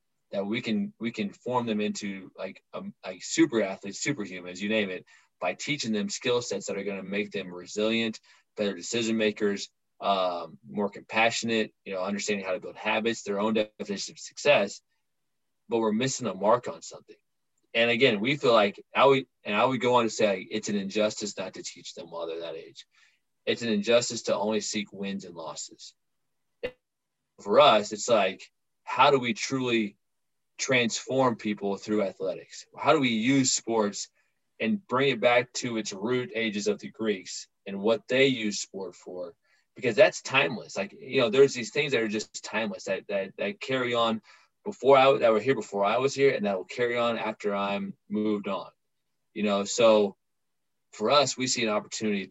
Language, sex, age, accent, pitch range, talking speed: English, male, 20-39, American, 100-125 Hz, 190 wpm